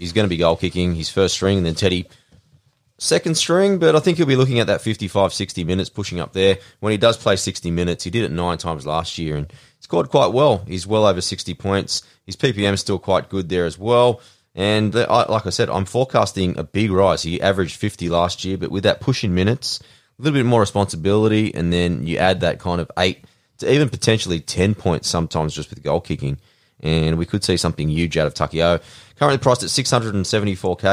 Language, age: English, 20-39